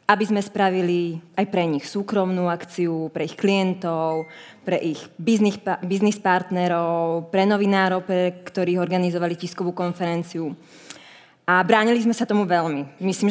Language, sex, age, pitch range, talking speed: Czech, female, 20-39, 175-210 Hz, 130 wpm